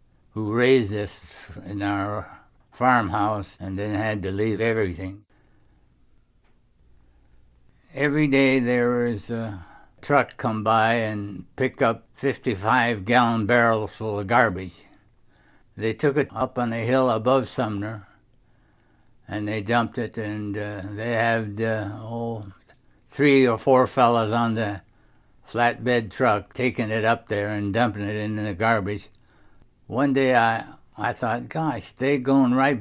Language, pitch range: English, 105-130 Hz